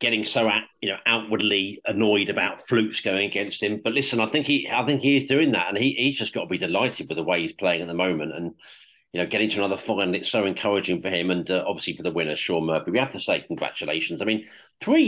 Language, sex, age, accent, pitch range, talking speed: English, male, 40-59, British, 100-120 Hz, 265 wpm